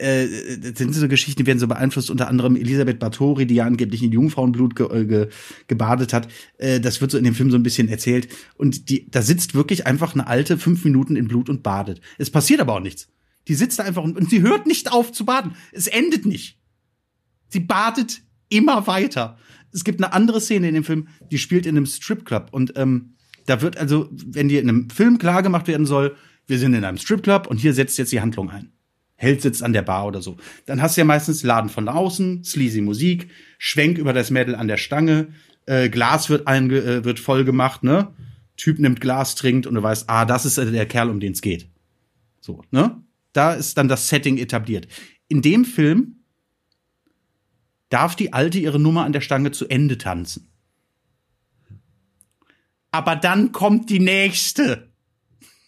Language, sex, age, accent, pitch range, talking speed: German, male, 30-49, German, 120-165 Hz, 195 wpm